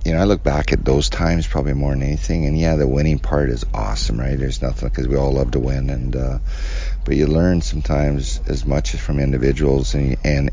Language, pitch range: English, 70-75 Hz